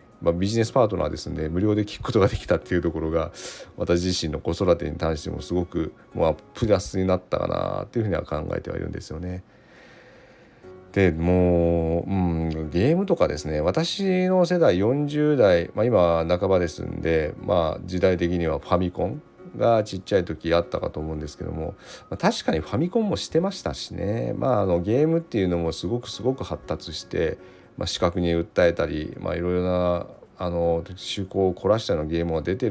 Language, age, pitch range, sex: Japanese, 40-59, 85-105 Hz, male